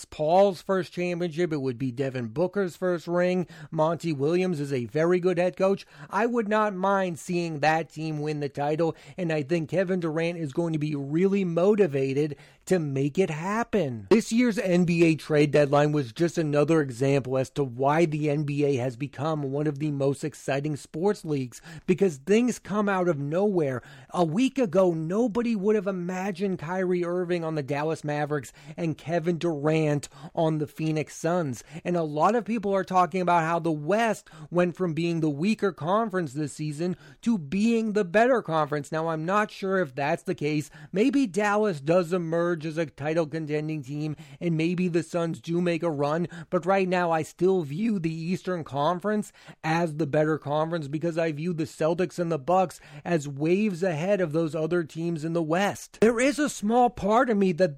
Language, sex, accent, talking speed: English, male, American, 185 wpm